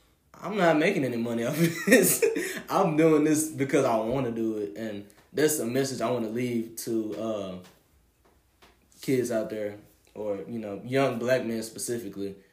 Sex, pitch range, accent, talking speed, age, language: male, 100-125 Hz, American, 175 wpm, 20-39, English